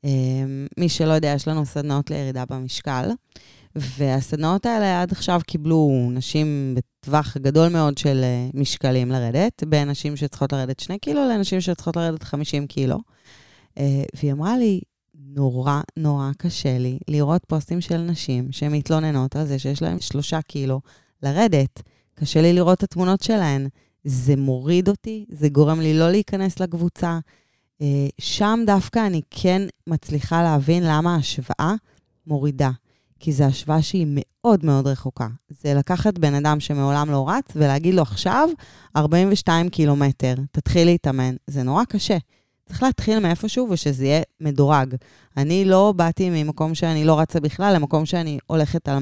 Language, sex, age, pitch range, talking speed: Hebrew, female, 20-39, 140-175 Hz, 145 wpm